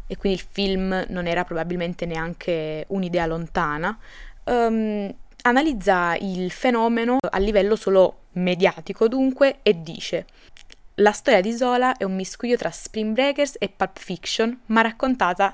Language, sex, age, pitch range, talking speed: Italian, female, 20-39, 175-210 Hz, 135 wpm